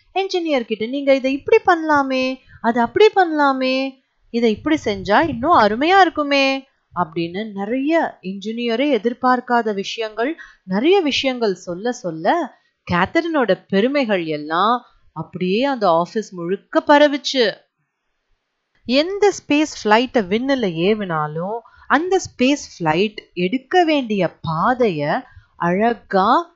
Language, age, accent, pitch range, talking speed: Tamil, 30-49, native, 190-280 Hz, 45 wpm